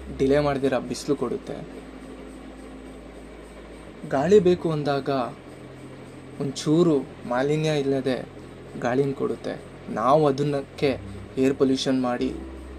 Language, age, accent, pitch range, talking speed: Kannada, 20-39, native, 130-155 Hz, 80 wpm